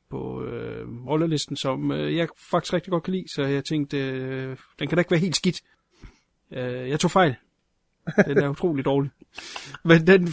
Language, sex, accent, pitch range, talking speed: Danish, male, native, 130-155 Hz, 165 wpm